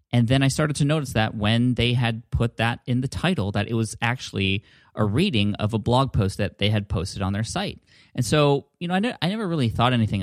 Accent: American